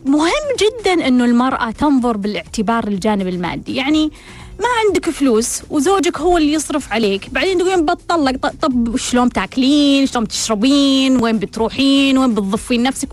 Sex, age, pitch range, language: female, 20-39, 235-315 Hz, Arabic